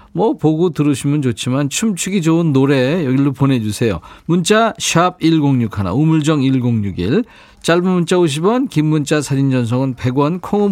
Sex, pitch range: male, 125-170 Hz